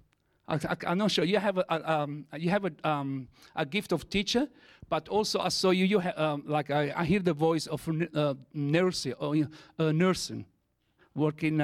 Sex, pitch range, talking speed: male, 155-190 Hz, 200 wpm